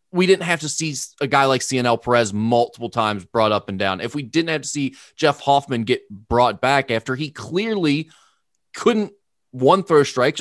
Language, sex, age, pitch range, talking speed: English, male, 20-39, 130-195 Hz, 195 wpm